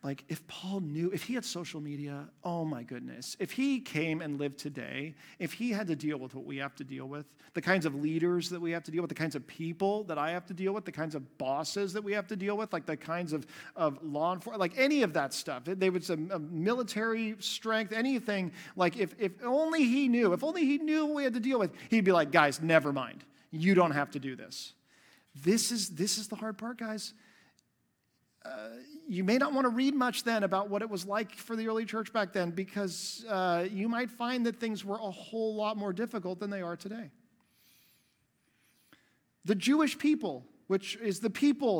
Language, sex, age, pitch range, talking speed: English, male, 40-59, 170-230 Hz, 225 wpm